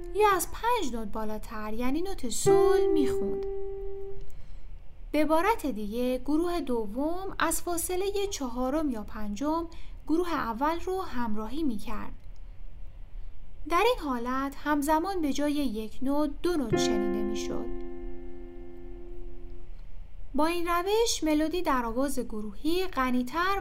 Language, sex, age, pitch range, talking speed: Persian, female, 10-29, 220-345 Hz, 110 wpm